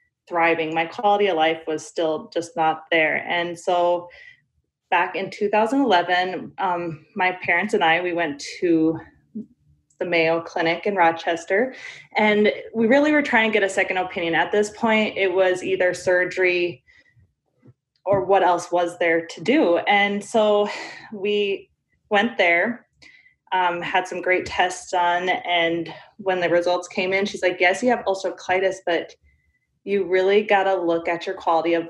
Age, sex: 20-39, female